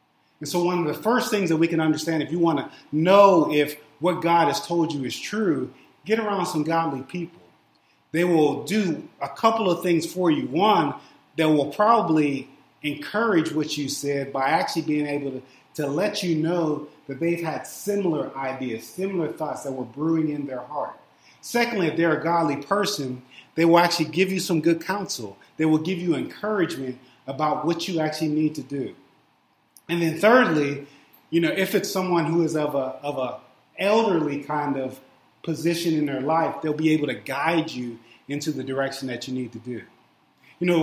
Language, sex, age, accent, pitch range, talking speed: English, male, 30-49, American, 145-170 Hz, 195 wpm